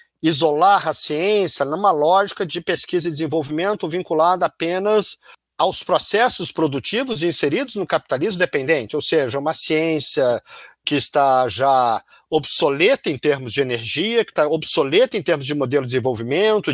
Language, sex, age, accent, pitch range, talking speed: Portuguese, male, 50-69, Brazilian, 140-185 Hz, 140 wpm